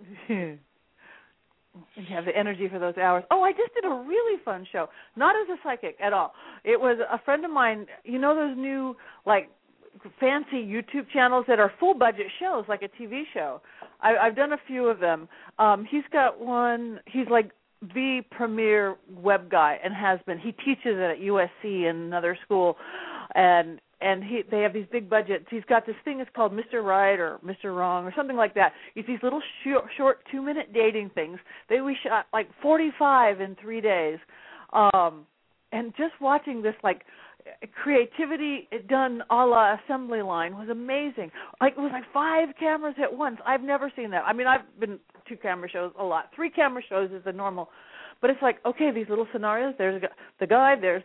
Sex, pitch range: female, 195-270 Hz